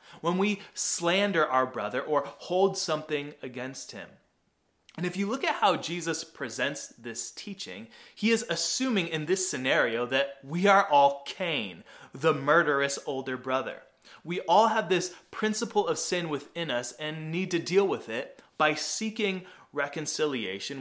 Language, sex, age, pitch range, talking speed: English, male, 20-39, 140-190 Hz, 155 wpm